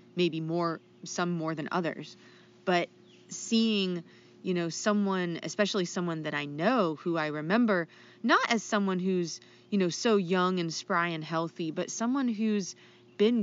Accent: American